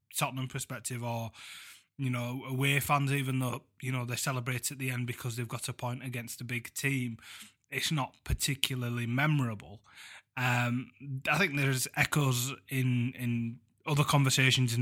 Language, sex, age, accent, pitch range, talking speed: English, male, 20-39, British, 125-140 Hz, 160 wpm